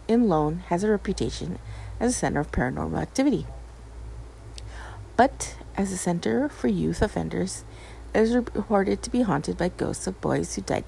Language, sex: English, female